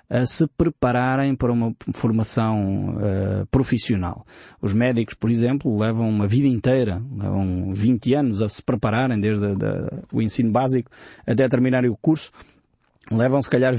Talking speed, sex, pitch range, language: 155 wpm, male, 120-160 Hz, Portuguese